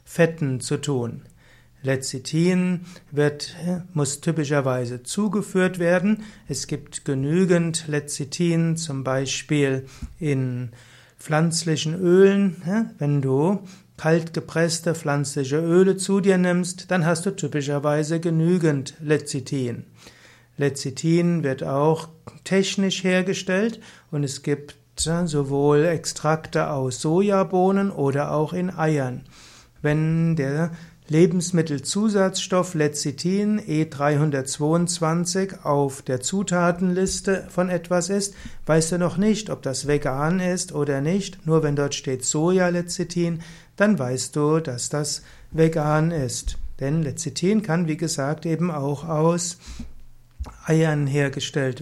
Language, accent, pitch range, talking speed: German, German, 145-180 Hz, 105 wpm